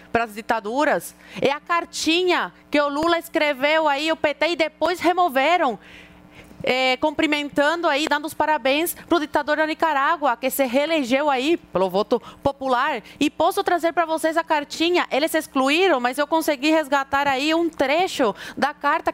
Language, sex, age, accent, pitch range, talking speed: Portuguese, female, 20-39, Brazilian, 235-325 Hz, 165 wpm